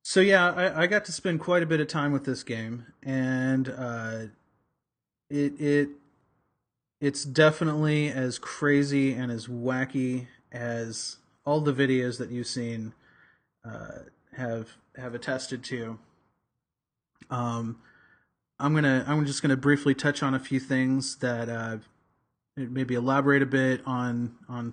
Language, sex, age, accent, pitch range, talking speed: English, male, 30-49, American, 120-140 Hz, 140 wpm